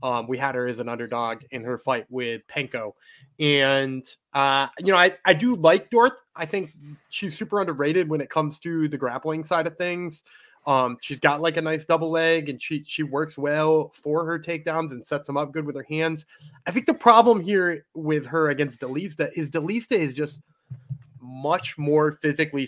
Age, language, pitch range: 20-39, English, 140-180 Hz